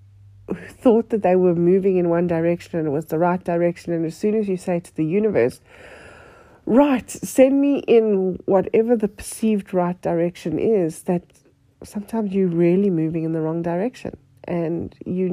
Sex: female